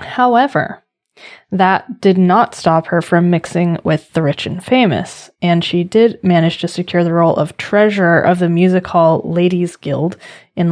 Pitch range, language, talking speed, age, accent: 165-210 Hz, English, 170 wpm, 20-39, American